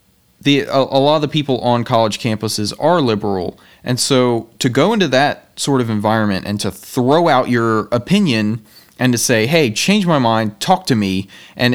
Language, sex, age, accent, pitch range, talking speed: English, male, 30-49, American, 105-140 Hz, 195 wpm